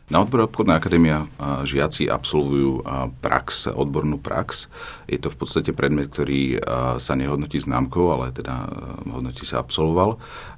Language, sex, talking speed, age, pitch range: Slovak, male, 130 wpm, 40-59, 65-75 Hz